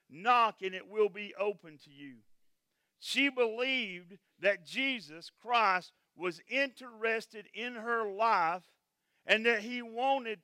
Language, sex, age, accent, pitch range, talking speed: English, male, 50-69, American, 185-240 Hz, 125 wpm